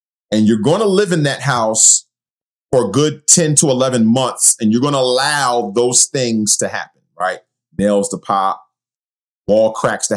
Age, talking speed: 30-49, 185 wpm